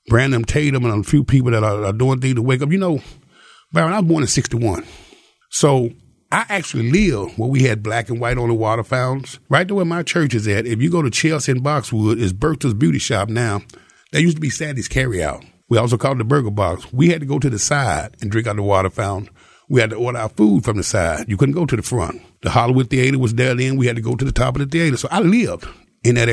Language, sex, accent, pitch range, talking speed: English, male, American, 115-155 Hz, 265 wpm